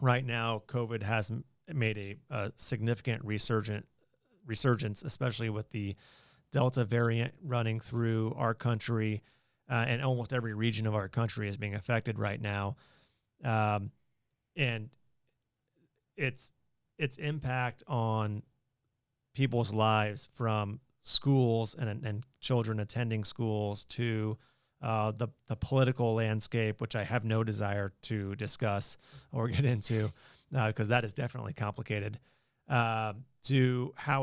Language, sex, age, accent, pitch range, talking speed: English, male, 30-49, American, 110-130 Hz, 130 wpm